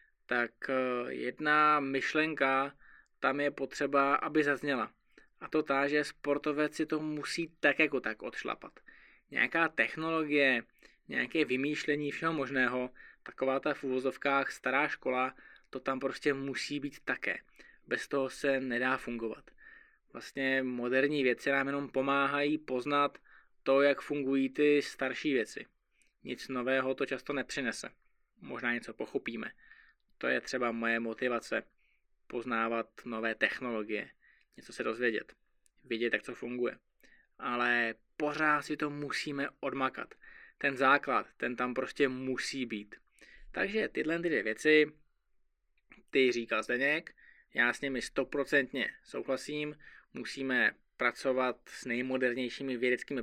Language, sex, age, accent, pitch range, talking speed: Czech, male, 20-39, native, 125-145 Hz, 120 wpm